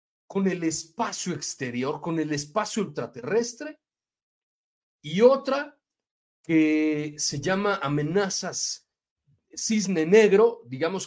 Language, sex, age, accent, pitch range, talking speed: Spanish, male, 40-59, Mexican, 160-230 Hz, 100 wpm